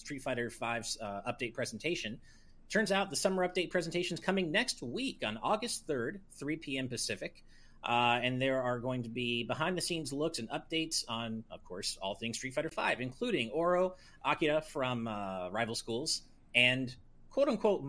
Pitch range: 110-160 Hz